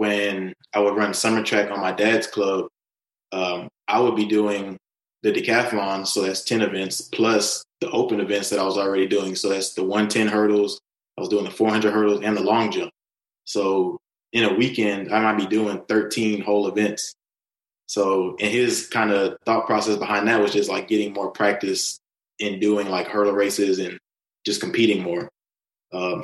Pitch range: 100-105 Hz